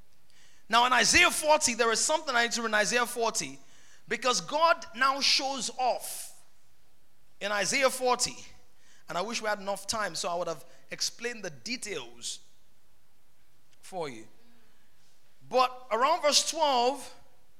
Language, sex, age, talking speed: English, male, 20-39, 145 wpm